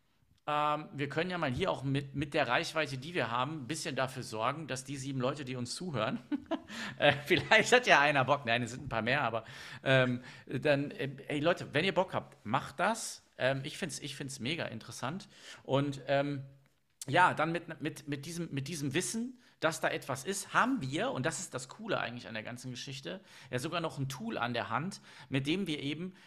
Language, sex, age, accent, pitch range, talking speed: German, male, 50-69, German, 125-160 Hz, 220 wpm